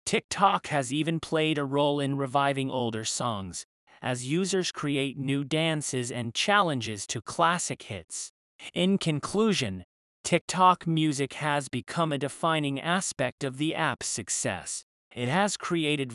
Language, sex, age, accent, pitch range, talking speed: English, male, 30-49, American, 125-160 Hz, 135 wpm